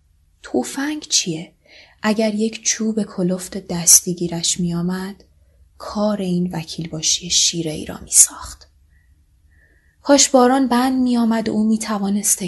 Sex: female